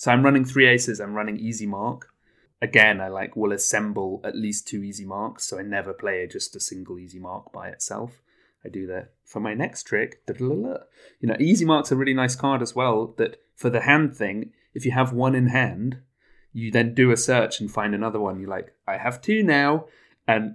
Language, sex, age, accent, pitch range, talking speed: English, male, 30-49, British, 110-135 Hz, 220 wpm